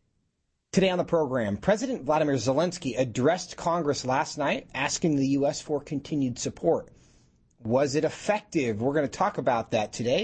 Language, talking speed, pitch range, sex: English, 150 wpm, 125-170 Hz, male